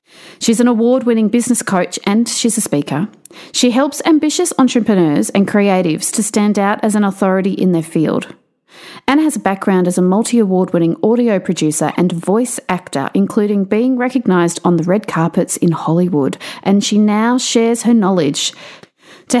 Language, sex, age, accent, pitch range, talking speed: English, female, 40-59, Australian, 175-235 Hz, 160 wpm